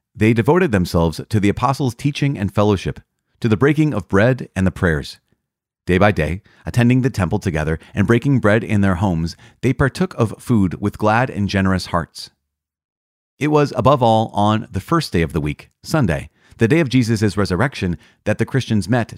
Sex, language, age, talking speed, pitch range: male, English, 40-59, 190 wpm, 95-130 Hz